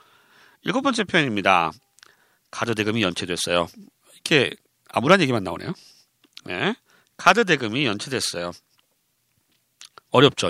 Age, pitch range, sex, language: 40-59, 125-205 Hz, male, Korean